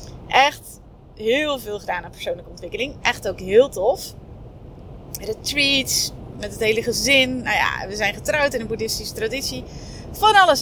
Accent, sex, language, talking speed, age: Dutch, female, Dutch, 155 wpm, 30-49